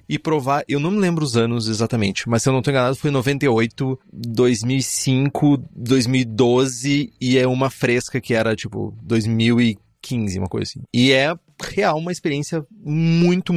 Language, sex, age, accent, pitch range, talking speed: Portuguese, male, 30-49, Brazilian, 115-155 Hz, 160 wpm